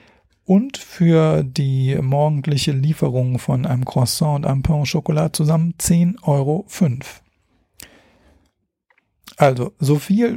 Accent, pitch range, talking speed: German, 135-170 Hz, 100 wpm